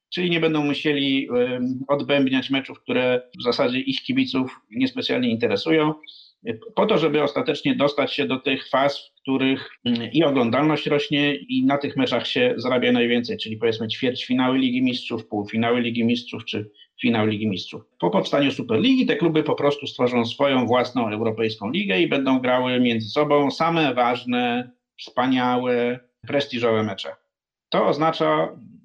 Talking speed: 145 wpm